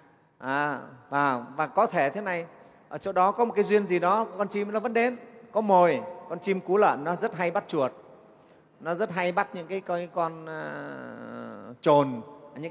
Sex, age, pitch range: male, 30-49, 140-190 Hz